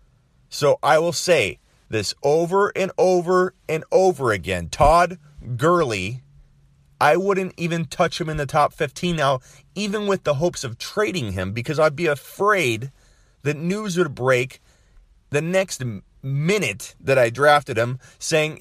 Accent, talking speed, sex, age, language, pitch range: American, 150 wpm, male, 30-49, English, 110-160 Hz